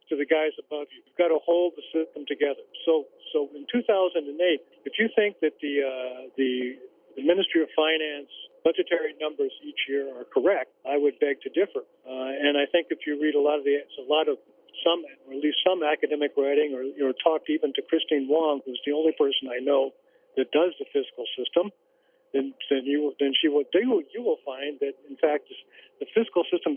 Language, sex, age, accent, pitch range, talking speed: English, male, 50-69, American, 140-205 Hz, 210 wpm